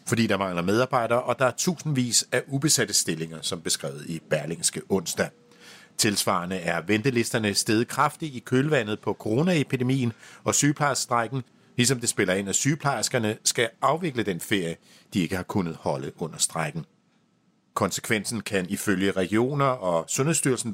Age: 60-79